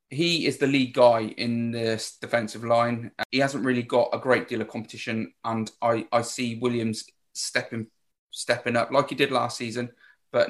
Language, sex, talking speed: English, male, 185 wpm